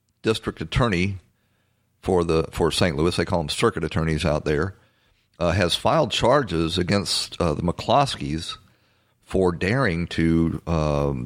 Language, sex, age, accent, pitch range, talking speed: English, male, 50-69, American, 90-110 Hz, 140 wpm